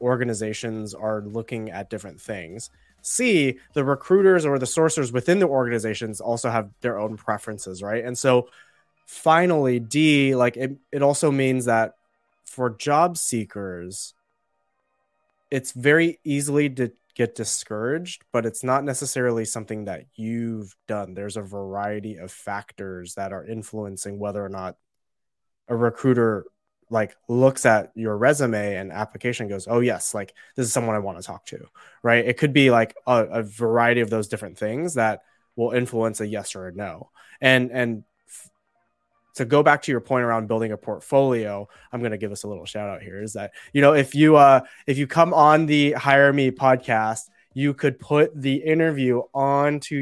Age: 20-39